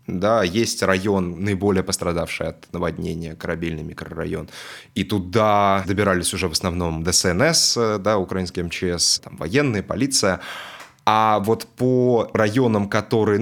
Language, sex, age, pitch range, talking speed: Russian, male, 20-39, 90-110 Hz, 120 wpm